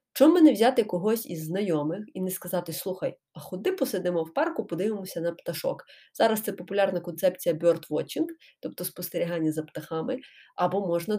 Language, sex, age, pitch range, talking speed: Ukrainian, female, 20-39, 170-230 Hz, 155 wpm